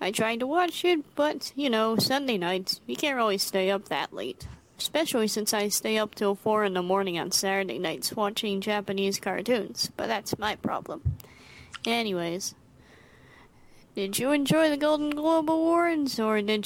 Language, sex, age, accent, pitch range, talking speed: English, female, 20-39, American, 190-225 Hz, 175 wpm